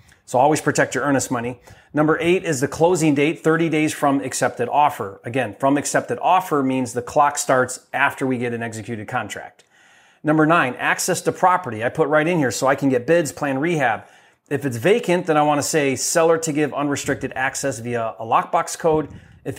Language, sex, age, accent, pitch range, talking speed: English, male, 30-49, American, 130-160 Hz, 200 wpm